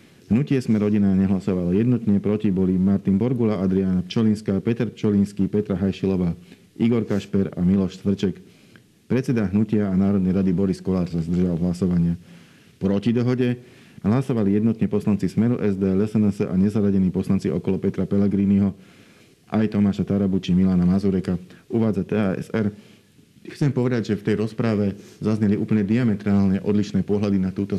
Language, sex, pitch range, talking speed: Slovak, male, 95-105 Hz, 140 wpm